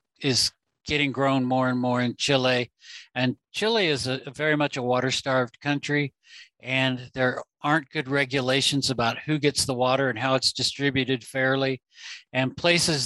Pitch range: 130-145 Hz